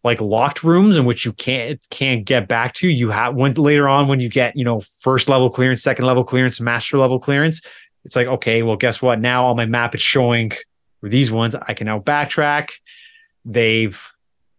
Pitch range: 120-150 Hz